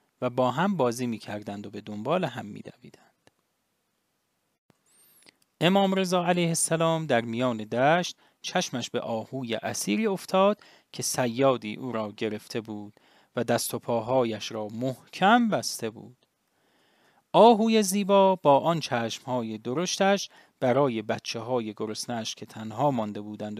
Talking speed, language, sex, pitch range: 130 wpm, English, male, 115-180 Hz